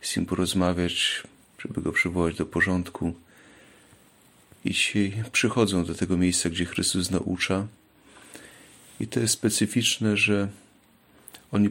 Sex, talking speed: male, 120 wpm